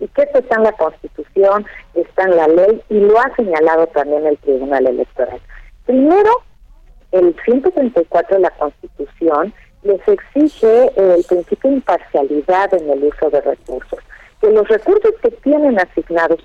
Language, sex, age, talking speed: Spanish, female, 50-69, 150 wpm